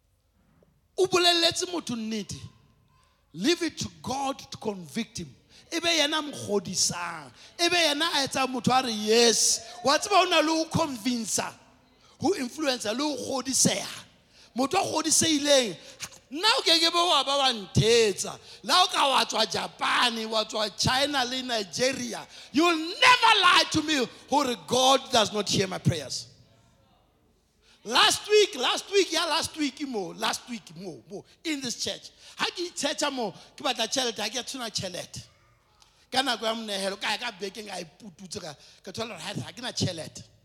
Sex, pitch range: male, 180-285 Hz